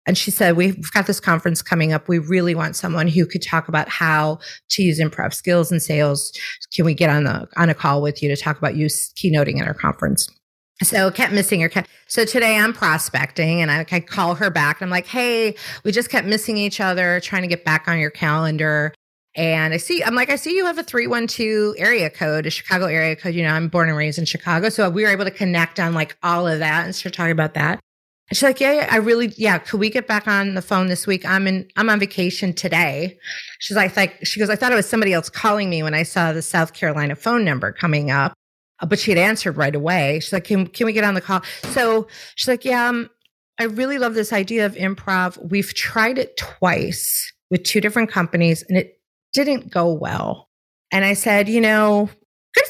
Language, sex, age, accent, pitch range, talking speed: English, female, 30-49, American, 165-215 Hz, 230 wpm